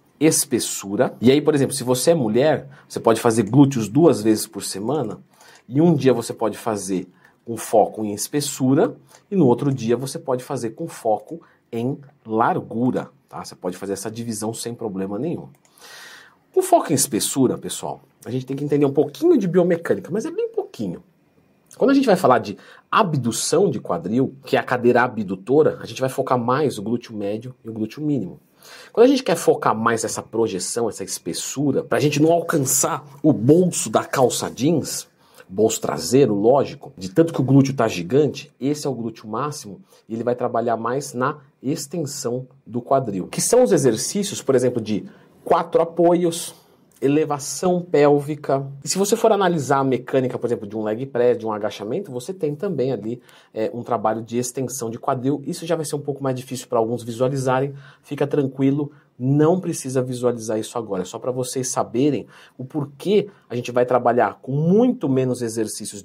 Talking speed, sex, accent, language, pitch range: 185 wpm, male, Brazilian, Portuguese, 115-155 Hz